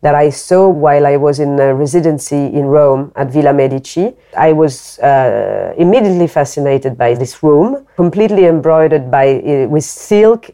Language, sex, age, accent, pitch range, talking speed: English, female, 40-59, French, 135-160 Hz, 155 wpm